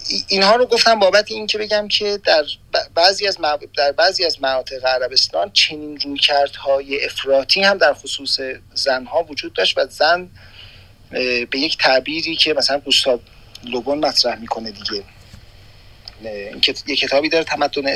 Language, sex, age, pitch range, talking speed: Persian, male, 40-59, 115-160 Hz, 145 wpm